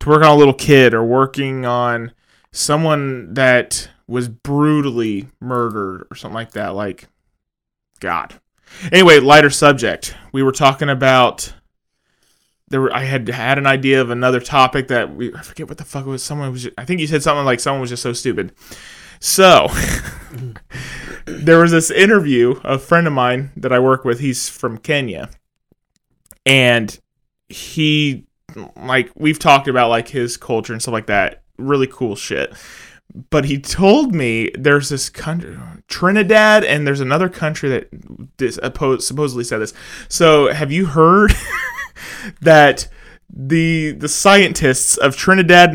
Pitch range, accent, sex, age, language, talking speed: 125-155 Hz, American, male, 20-39, English, 160 wpm